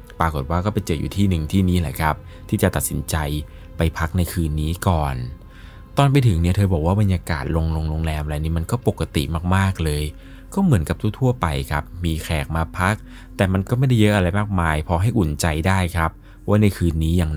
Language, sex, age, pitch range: Thai, male, 20-39, 75-95 Hz